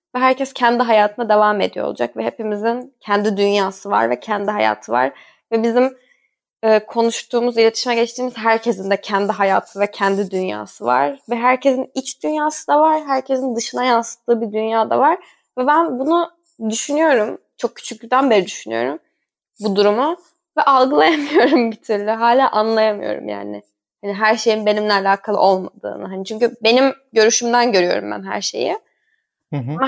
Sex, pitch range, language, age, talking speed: female, 210-260 Hz, Turkish, 10-29, 150 wpm